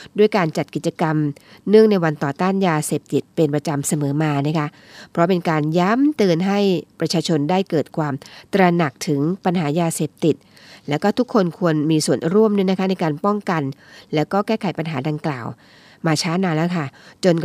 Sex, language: female, Thai